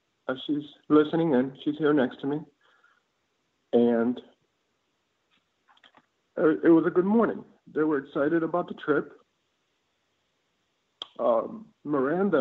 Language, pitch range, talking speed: English, 150-255 Hz, 105 wpm